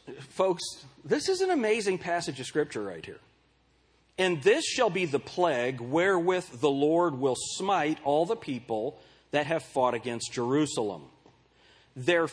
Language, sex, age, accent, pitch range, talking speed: English, male, 40-59, American, 140-185 Hz, 145 wpm